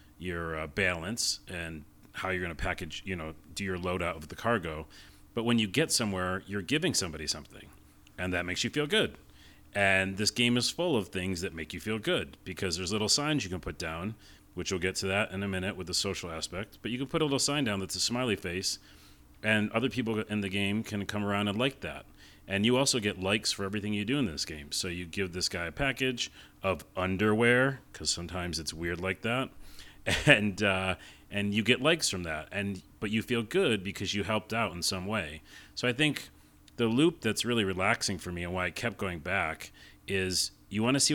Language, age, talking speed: English, 40-59, 230 wpm